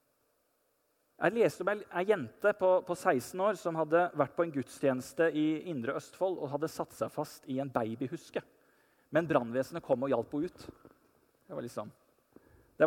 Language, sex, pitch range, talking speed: English, male, 140-200 Hz, 175 wpm